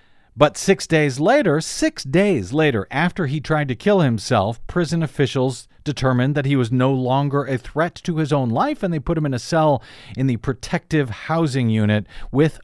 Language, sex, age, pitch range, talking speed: English, male, 40-59, 115-150 Hz, 190 wpm